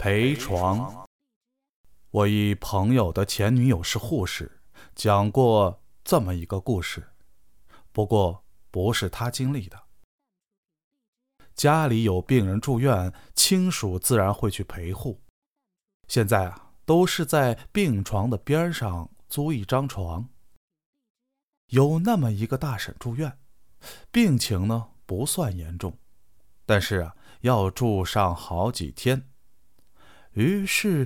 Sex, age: male, 20-39